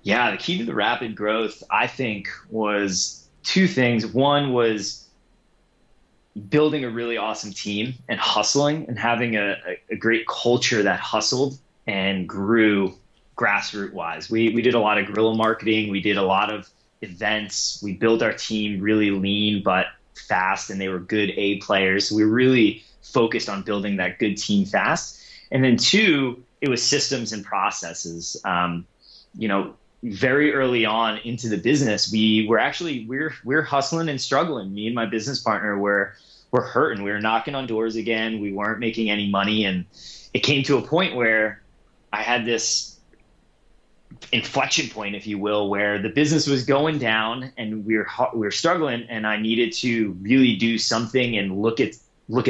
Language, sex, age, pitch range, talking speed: English, male, 20-39, 105-125 Hz, 170 wpm